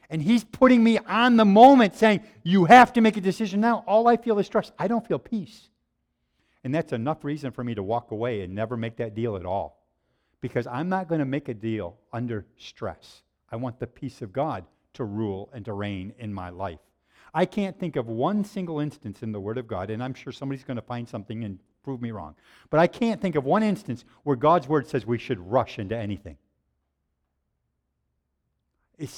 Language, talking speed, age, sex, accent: English, 215 wpm, 50-69, male, American